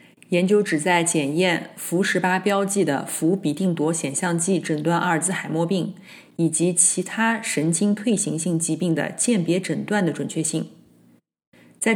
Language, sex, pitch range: Chinese, female, 165-205 Hz